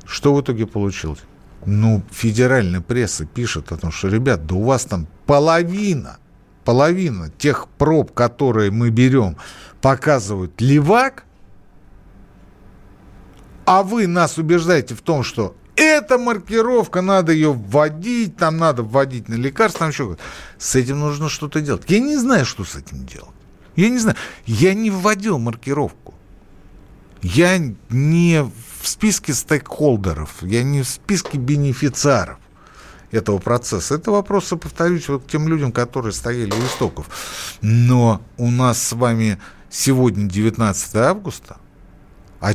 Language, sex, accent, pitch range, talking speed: Russian, male, native, 100-160 Hz, 135 wpm